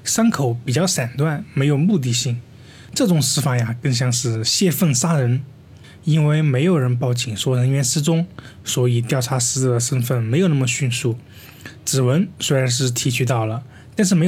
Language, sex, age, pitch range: Chinese, male, 20-39, 120-155 Hz